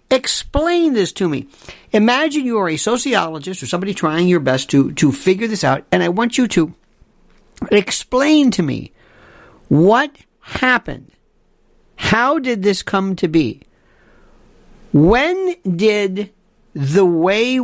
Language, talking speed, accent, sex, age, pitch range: English, 135 wpm, American, male, 50-69, 155-245 Hz